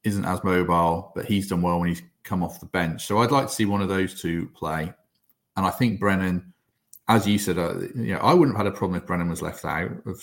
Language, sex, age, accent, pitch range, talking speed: English, male, 30-49, British, 85-105 Hz, 265 wpm